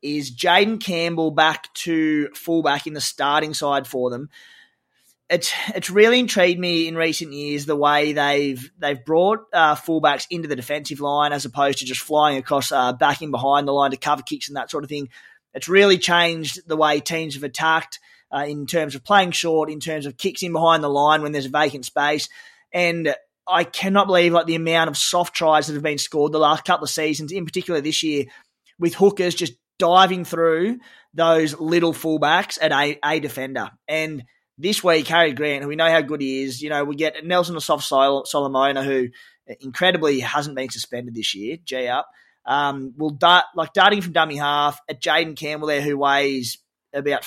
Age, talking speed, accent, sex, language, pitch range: 20-39, 200 wpm, Australian, male, English, 145-165 Hz